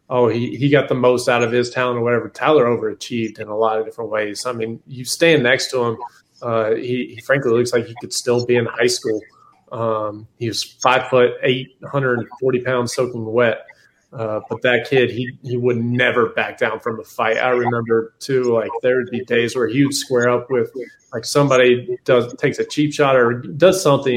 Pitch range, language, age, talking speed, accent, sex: 115-140 Hz, English, 20-39, 220 wpm, American, male